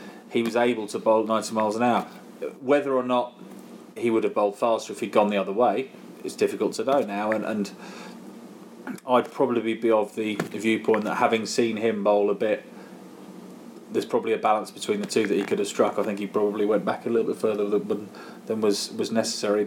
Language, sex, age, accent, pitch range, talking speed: English, male, 30-49, British, 105-115 Hz, 210 wpm